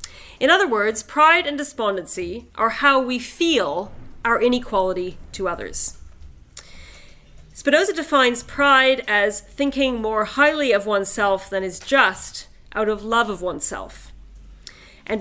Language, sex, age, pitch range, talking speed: English, female, 40-59, 195-270 Hz, 125 wpm